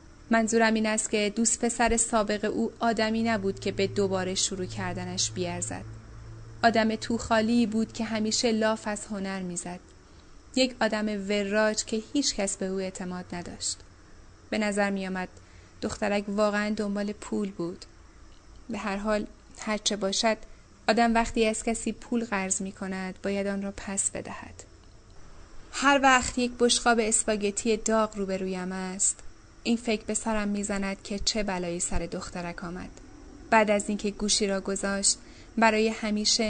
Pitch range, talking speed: 185-225 Hz, 150 wpm